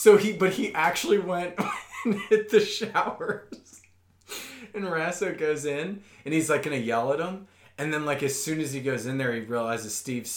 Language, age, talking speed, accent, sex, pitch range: English, 20-39, 205 wpm, American, male, 115-195 Hz